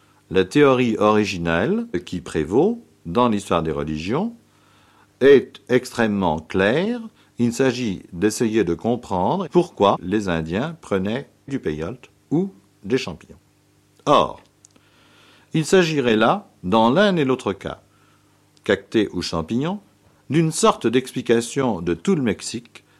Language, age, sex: French, 50-69, male